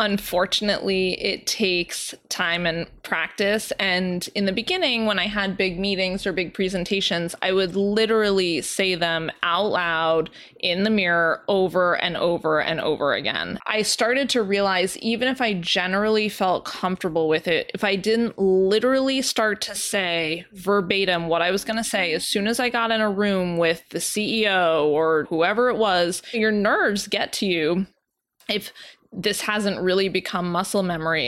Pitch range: 175-210 Hz